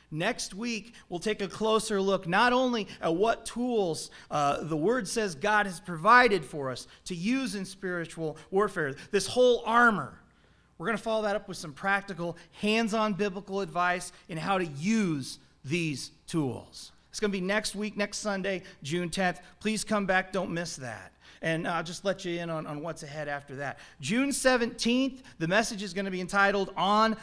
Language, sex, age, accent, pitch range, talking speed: English, male, 40-59, American, 160-220 Hz, 185 wpm